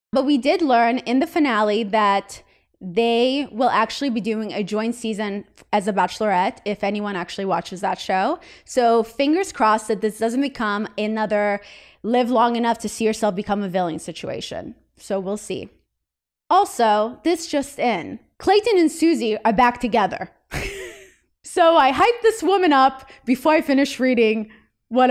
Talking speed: 160 wpm